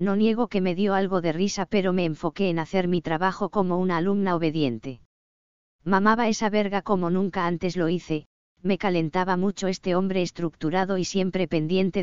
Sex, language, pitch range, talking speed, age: female, English, 165-195 Hz, 180 wpm, 20-39